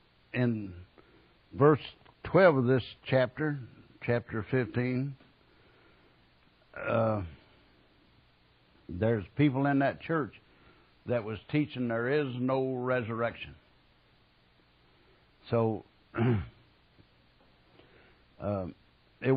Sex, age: male, 60-79